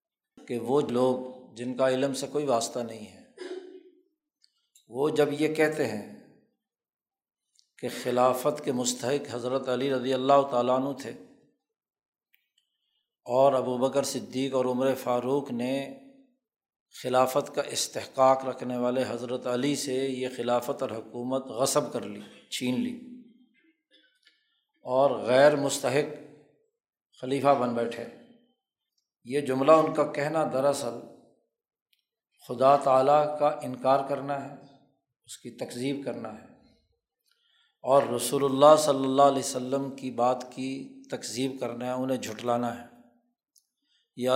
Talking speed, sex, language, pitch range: 125 wpm, male, Urdu, 125-150 Hz